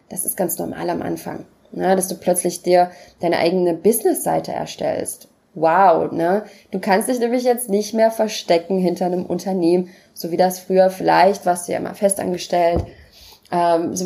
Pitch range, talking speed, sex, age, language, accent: 175-210 Hz, 170 wpm, female, 20-39, German, German